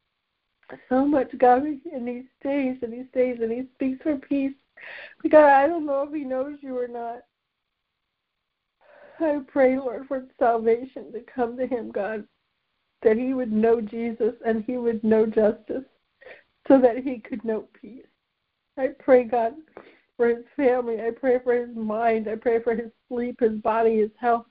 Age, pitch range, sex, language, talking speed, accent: 60-79, 230-280 Hz, female, English, 170 wpm, American